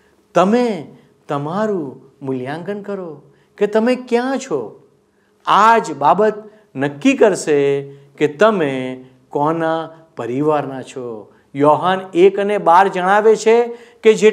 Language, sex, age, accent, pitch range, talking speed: Gujarati, male, 50-69, native, 160-235 Hz, 65 wpm